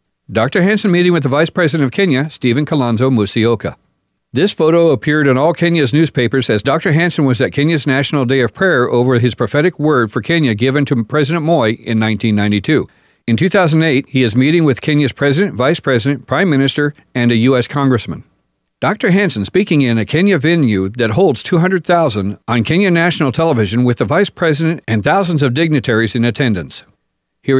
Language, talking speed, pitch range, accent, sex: English, 180 wpm, 115-160 Hz, American, male